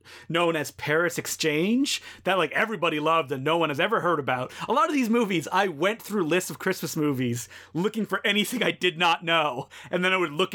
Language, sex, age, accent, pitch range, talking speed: English, male, 30-49, American, 150-200 Hz, 220 wpm